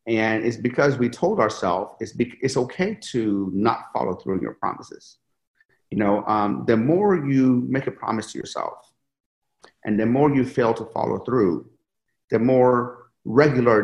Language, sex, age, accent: English, male, 40-59, American